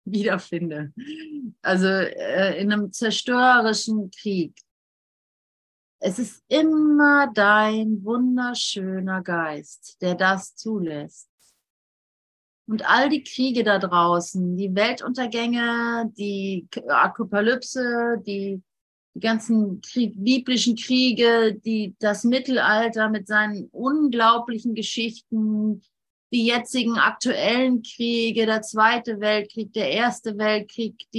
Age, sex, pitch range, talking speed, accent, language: 30-49, female, 210-245 Hz, 95 wpm, German, German